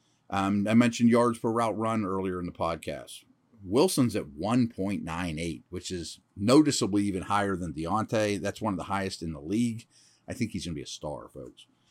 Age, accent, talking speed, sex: 40-59, American, 190 wpm, male